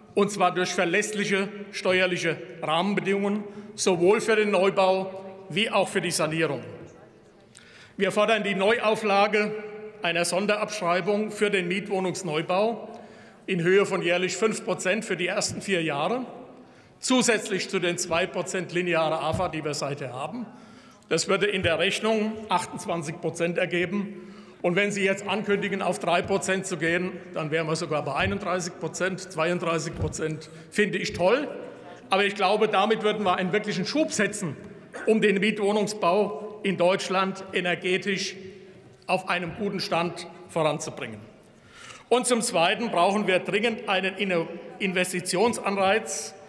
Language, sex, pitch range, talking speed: German, male, 175-205 Hz, 135 wpm